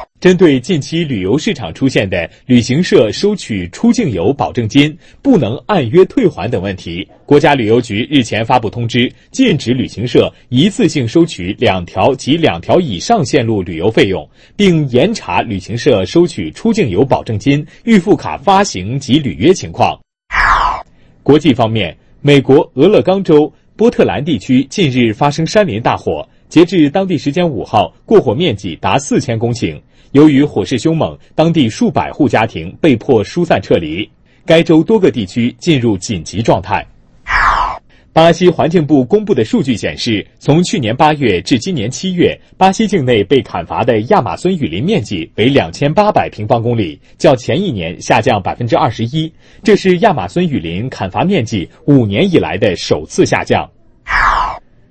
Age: 30-49